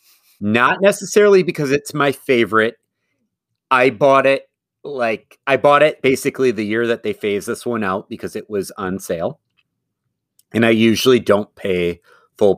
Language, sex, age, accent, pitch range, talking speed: English, male, 30-49, American, 95-125 Hz, 155 wpm